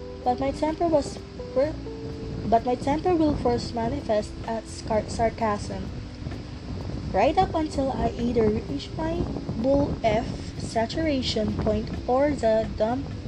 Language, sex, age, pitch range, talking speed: English, female, 20-39, 200-270 Hz, 120 wpm